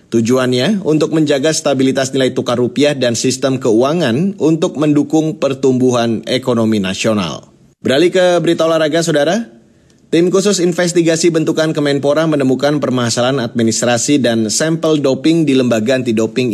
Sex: male